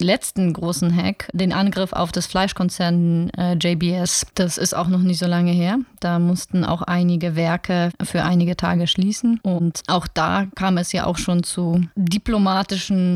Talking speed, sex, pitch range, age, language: 170 wpm, female, 175-190 Hz, 20-39, German